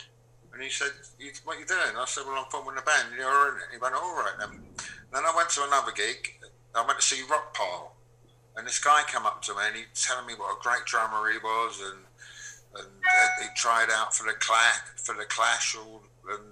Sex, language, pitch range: male, English, 115-140 Hz